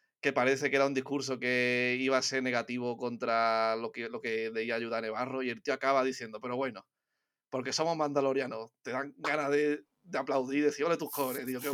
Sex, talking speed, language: male, 210 wpm, Spanish